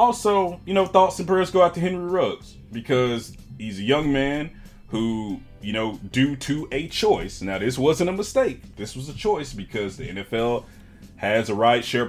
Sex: male